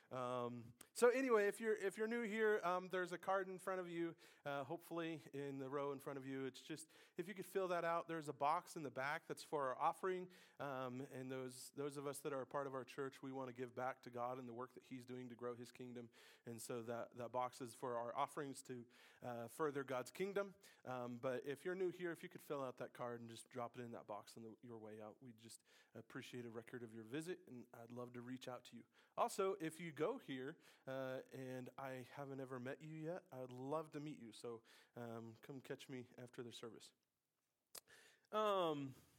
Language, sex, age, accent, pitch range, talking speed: English, male, 30-49, American, 125-180 Hz, 240 wpm